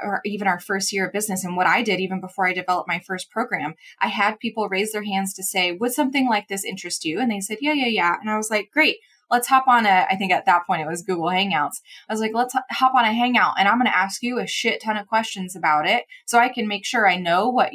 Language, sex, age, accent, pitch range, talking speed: English, female, 20-39, American, 185-235 Hz, 285 wpm